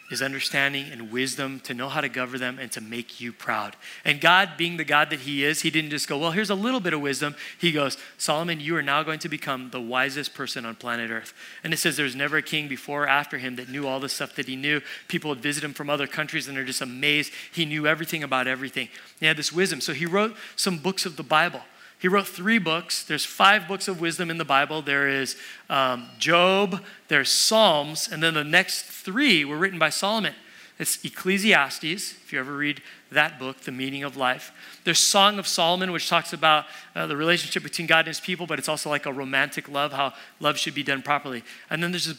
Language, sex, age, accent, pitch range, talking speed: English, male, 30-49, American, 140-180 Hz, 240 wpm